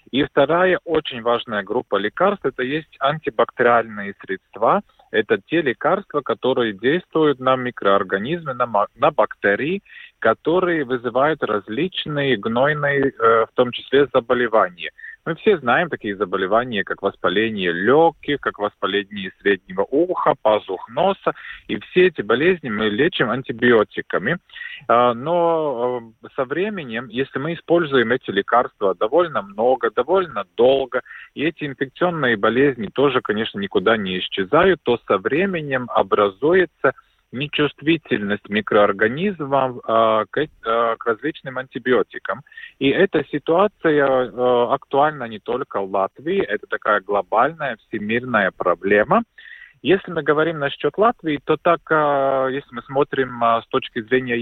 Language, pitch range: Russian, 120-165 Hz